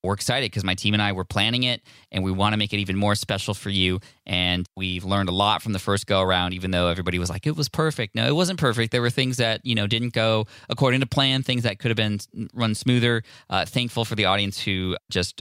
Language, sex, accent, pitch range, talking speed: English, male, American, 95-125 Hz, 265 wpm